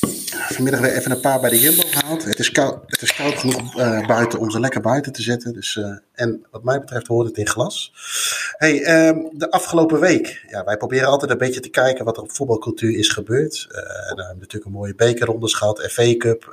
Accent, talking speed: Dutch, 225 wpm